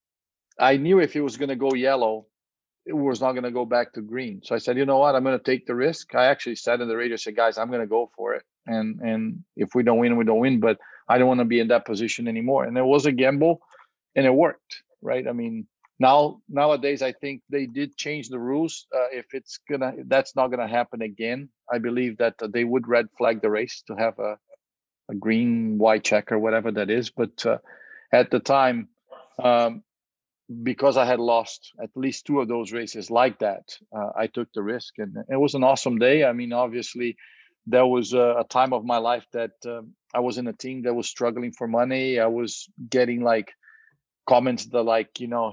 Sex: male